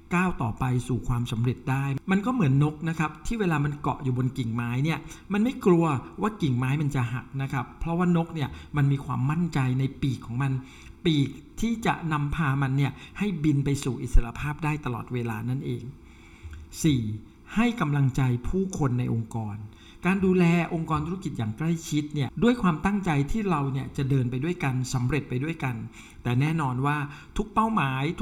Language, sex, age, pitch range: Thai, male, 60-79, 125-170 Hz